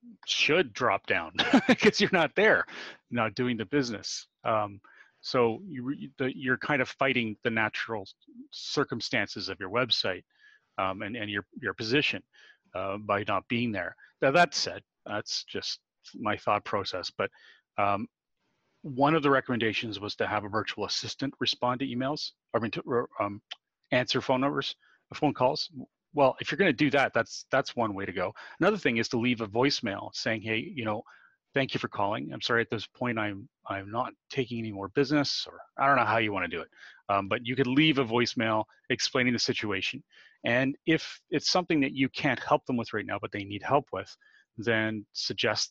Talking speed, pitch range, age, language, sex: 190 wpm, 110-140 Hz, 30-49, English, male